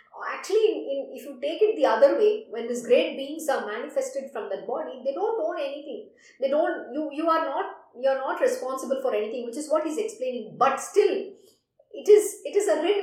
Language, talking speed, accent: English, 220 wpm, Indian